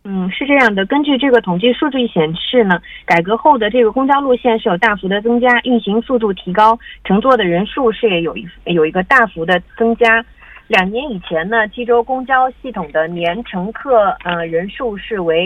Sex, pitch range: female, 180-245 Hz